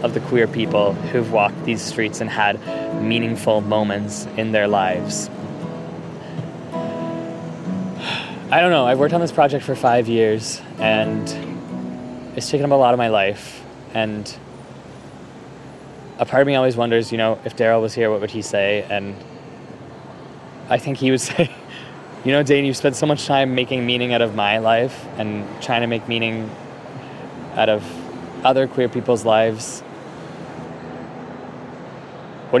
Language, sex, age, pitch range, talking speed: English, male, 20-39, 105-130 Hz, 155 wpm